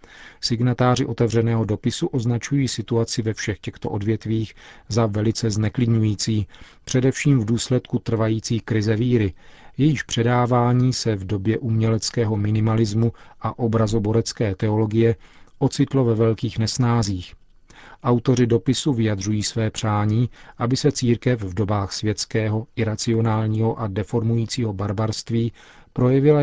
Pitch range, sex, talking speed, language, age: 105-125 Hz, male, 110 wpm, Czech, 40-59